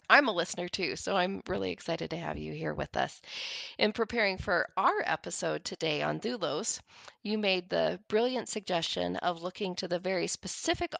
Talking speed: 180 wpm